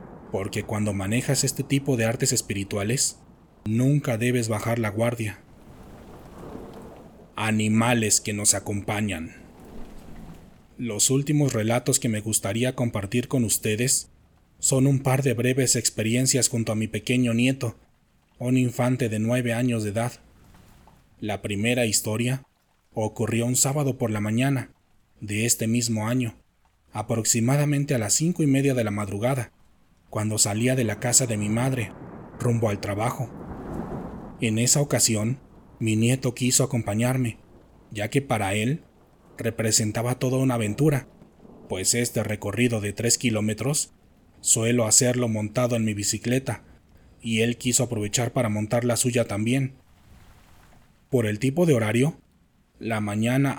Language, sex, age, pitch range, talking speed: Spanish, male, 30-49, 105-130 Hz, 135 wpm